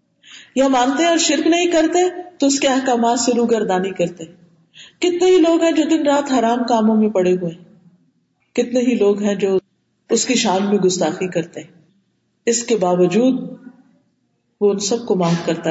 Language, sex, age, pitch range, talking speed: Urdu, female, 50-69, 180-255 Hz, 170 wpm